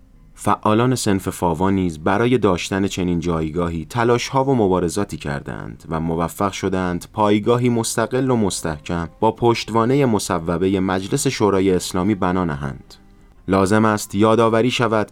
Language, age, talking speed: Persian, 30-49, 125 wpm